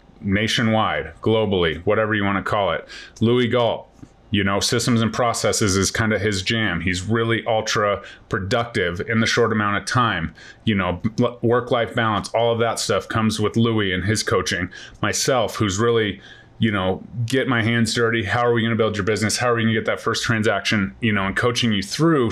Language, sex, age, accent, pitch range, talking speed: English, male, 30-49, American, 105-120 Hz, 205 wpm